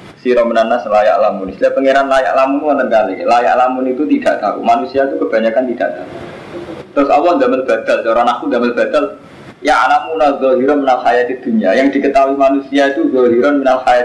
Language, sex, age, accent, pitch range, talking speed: Indonesian, male, 20-39, native, 125-190 Hz, 165 wpm